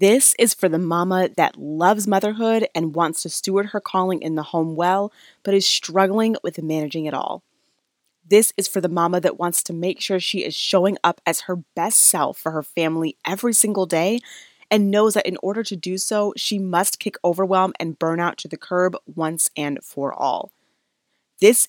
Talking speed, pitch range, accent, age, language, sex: 195 wpm, 155-195 Hz, American, 20-39, English, female